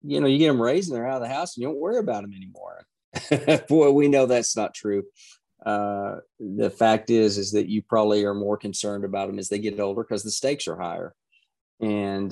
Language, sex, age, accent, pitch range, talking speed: English, male, 40-59, American, 100-125 Hz, 235 wpm